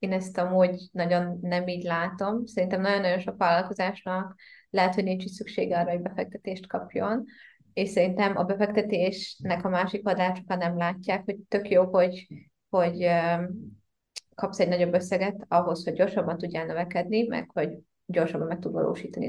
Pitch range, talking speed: 175-200 Hz, 155 wpm